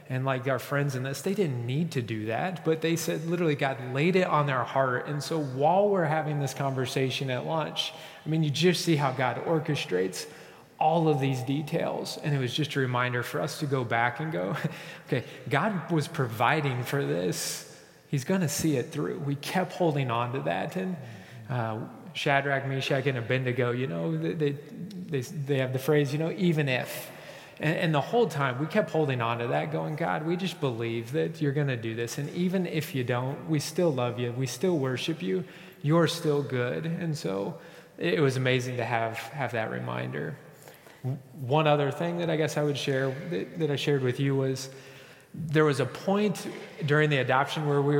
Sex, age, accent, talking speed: male, 30-49, American, 205 wpm